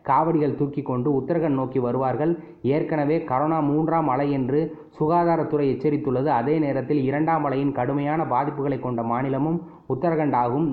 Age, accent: 30-49, native